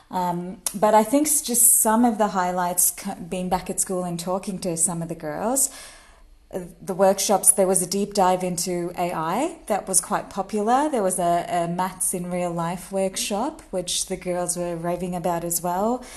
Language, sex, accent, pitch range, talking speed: English, female, Australian, 180-200 Hz, 185 wpm